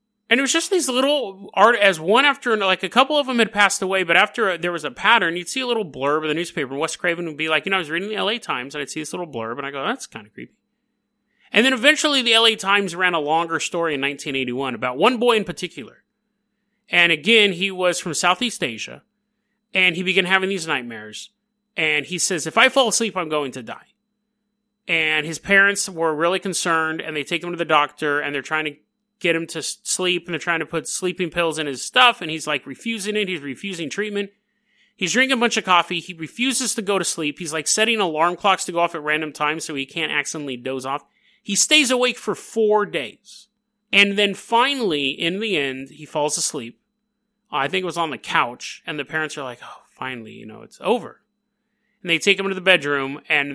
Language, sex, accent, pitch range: English, male, American, 155-215 Hz